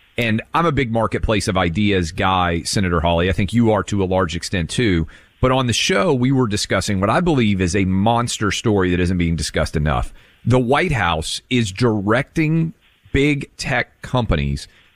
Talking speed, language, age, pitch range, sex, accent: 185 wpm, English, 40-59, 95-130 Hz, male, American